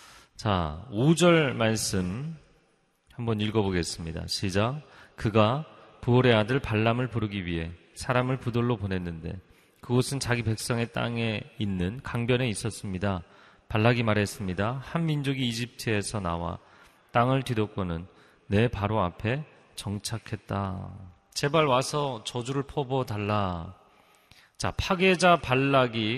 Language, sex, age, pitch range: Korean, male, 30-49, 100-140 Hz